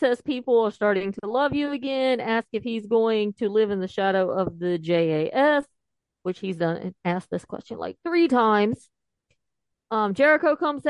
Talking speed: 175 wpm